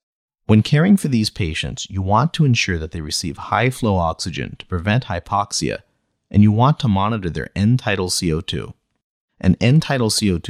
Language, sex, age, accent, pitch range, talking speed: English, male, 30-49, American, 90-115 Hz, 160 wpm